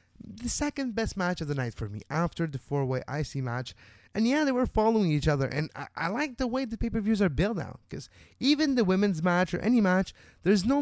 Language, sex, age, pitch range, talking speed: English, male, 20-39, 110-170 Hz, 235 wpm